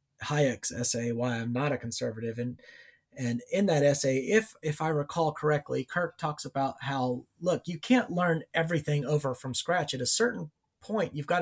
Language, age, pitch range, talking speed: English, 30-49, 140-170 Hz, 185 wpm